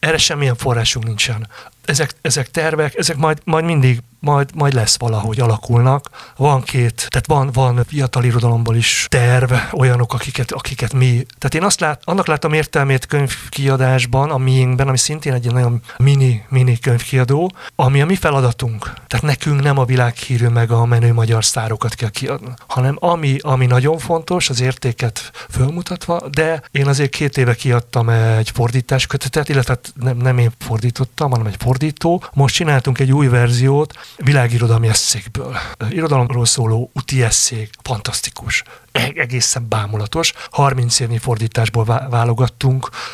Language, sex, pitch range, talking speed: Hungarian, male, 120-140 Hz, 145 wpm